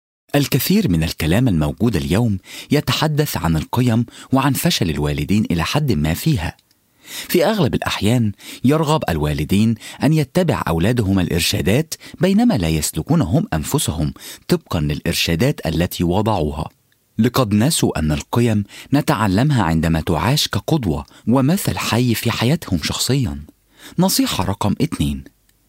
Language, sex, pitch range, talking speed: English, male, 85-140 Hz, 110 wpm